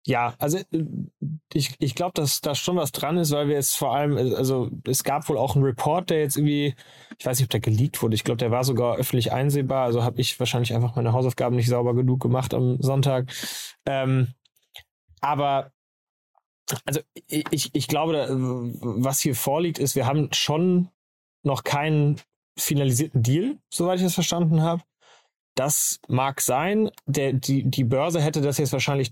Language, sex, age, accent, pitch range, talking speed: German, male, 20-39, German, 130-150 Hz, 180 wpm